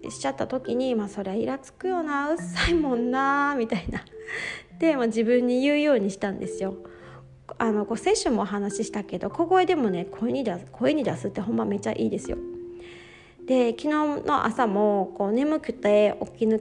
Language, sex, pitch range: Japanese, female, 200-270 Hz